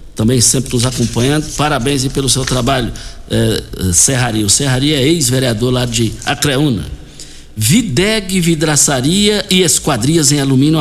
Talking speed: 135 wpm